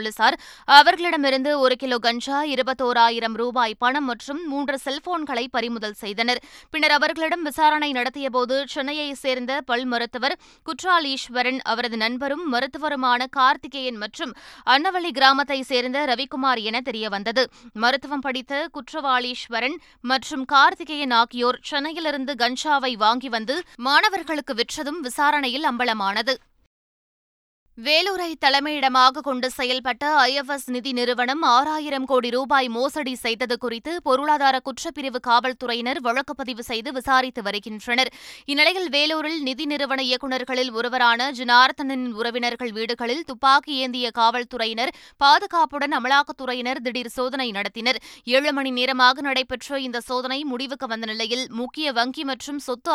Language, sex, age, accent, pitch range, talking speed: Tamil, female, 20-39, native, 245-285 Hz, 115 wpm